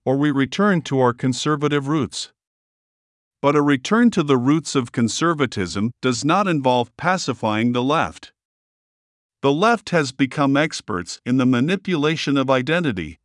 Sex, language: male, English